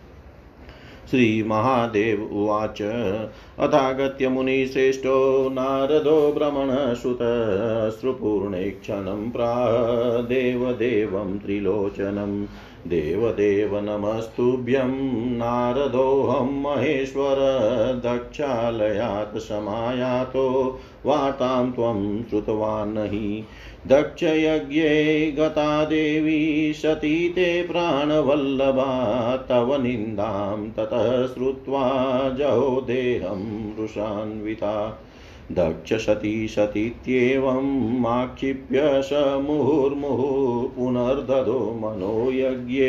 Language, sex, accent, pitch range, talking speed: Hindi, male, native, 110-140 Hz, 50 wpm